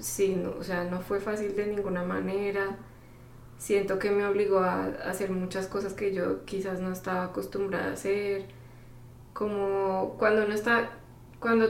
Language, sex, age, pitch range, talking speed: English, female, 20-39, 185-210 Hz, 165 wpm